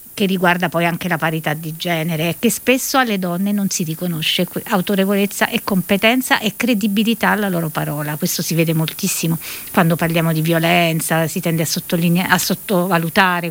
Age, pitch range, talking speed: 50-69, 165-210 Hz, 160 wpm